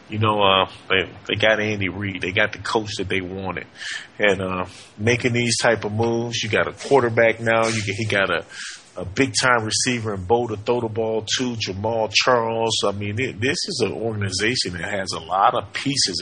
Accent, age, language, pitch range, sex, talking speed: American, 30-49, English, 100-125 Hz, male, 200 wpm